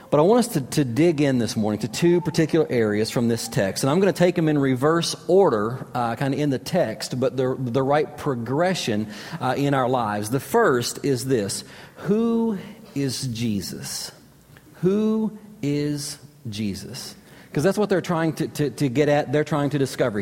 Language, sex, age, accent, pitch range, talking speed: English, male, 40-59, American, 130-165 Hz, 195 wpm